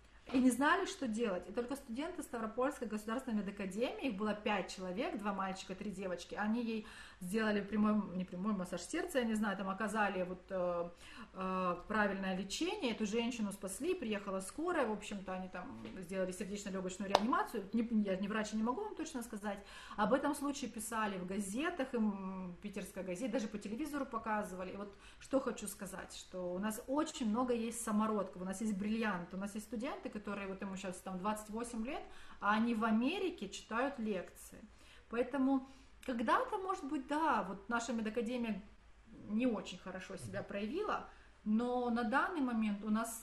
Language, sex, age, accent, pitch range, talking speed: Russian, female, 30-49, native, 200-245 Hz, 170 wpm